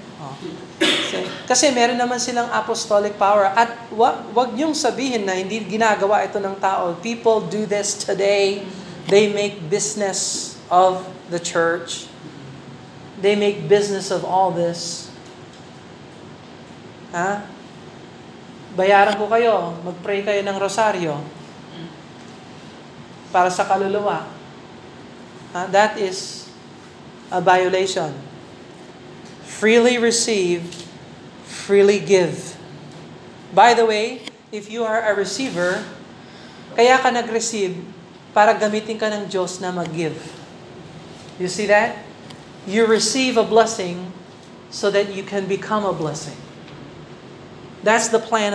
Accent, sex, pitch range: native, male, 185-220 Hz